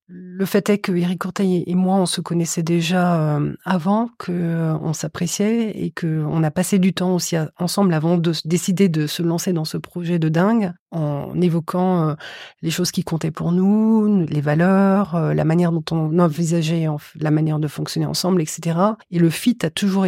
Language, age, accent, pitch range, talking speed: French, 30-49, French, 165-195 Hz, 180 wpm